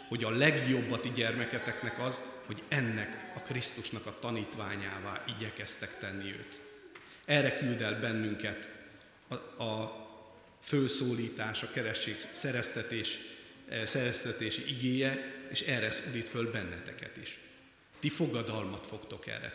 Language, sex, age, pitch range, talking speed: Hungarian, male, 50-69, 110-135 Hz, 115 wpm